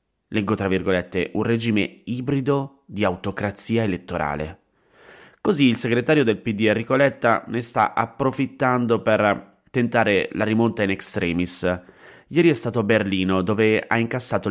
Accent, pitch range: native, 95-120 Hz